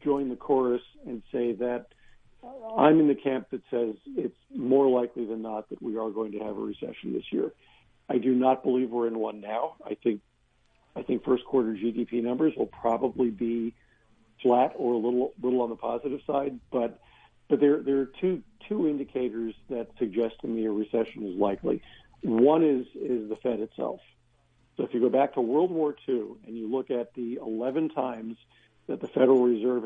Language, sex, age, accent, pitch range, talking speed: English, male, 50-69, American, 115-135 Hz, 195 wpm